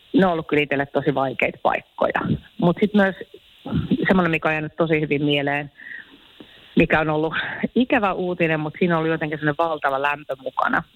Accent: native